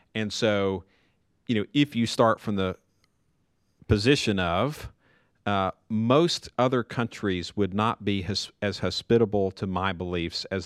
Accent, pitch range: American, 90-110 Hz